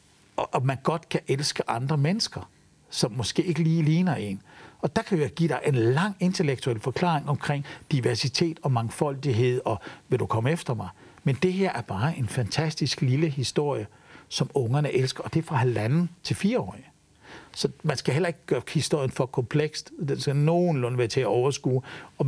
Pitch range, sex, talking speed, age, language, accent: 125-165 Hz, male, 185 wpm, 60-79, Danish, native